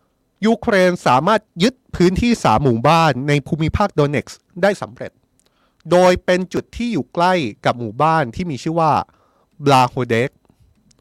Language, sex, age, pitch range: Thai, male, 30-49, 130-180 Hz